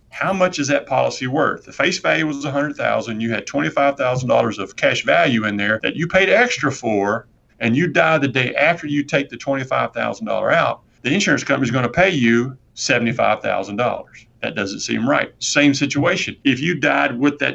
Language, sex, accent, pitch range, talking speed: English, male, American, 120-145 Hz, 190 wpm